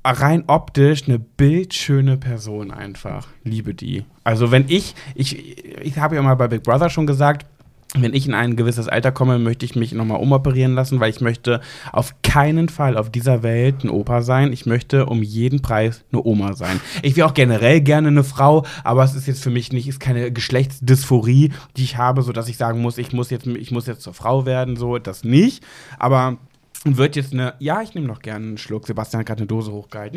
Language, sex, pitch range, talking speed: German, male, 120-150 Hz, 215 wpm